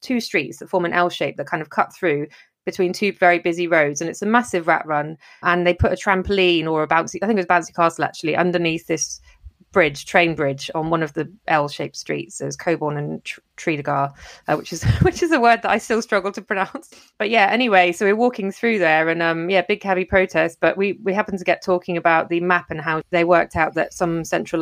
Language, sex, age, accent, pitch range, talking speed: English, female, 30-49, British, 150-180 Hz, 240 wpm